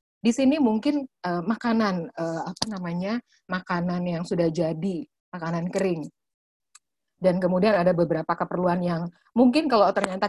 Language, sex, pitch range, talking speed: Indonesian, female, 170-215 Hz, 135 wpm